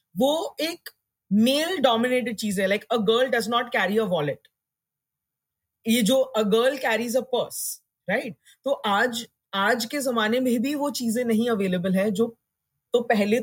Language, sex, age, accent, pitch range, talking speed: Hindi, female, 30-49, native, 185-235 Hz, 165 wpm